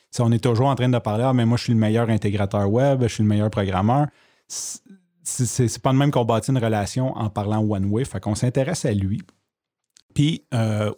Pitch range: 105-125 Hz